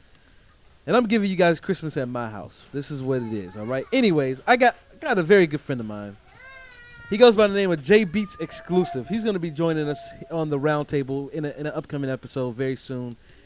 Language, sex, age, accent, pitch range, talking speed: English, male, 20-39, American, 150-215 Hz, 225 wpm